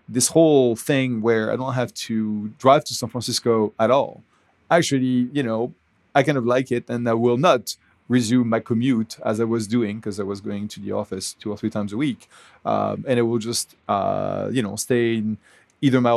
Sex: male